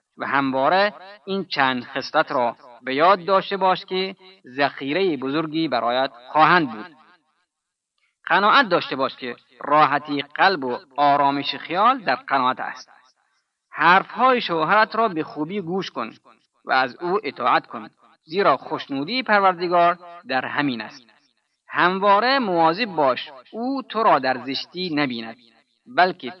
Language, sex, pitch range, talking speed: Persian, male, 135-195 Hz, 125 wpm